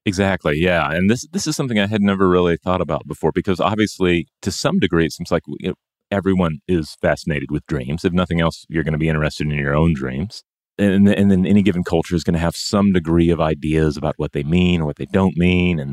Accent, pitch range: American, 75-90 Hz